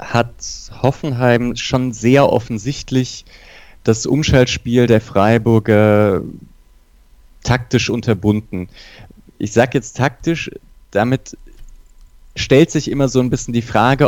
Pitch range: 100-125 Hz